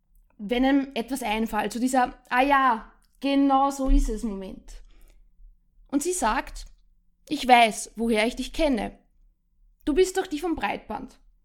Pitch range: 220-275 Hz